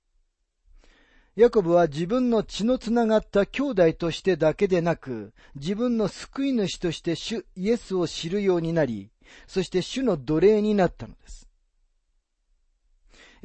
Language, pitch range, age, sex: Japanese, 130-210 Hz, 40-59, male